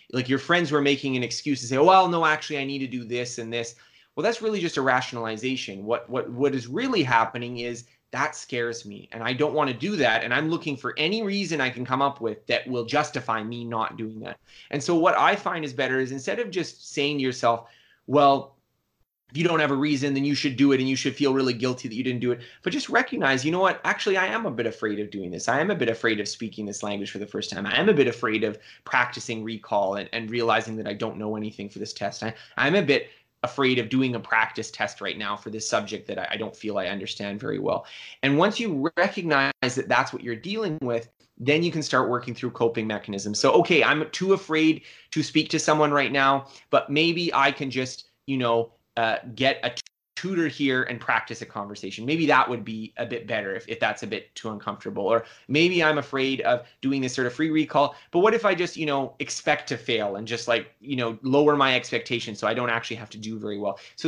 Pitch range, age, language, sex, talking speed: 115-150 Hz, 20-39, English, male, 250 wpm